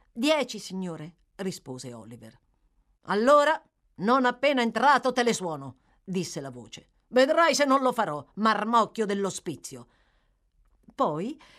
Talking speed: 115 wpm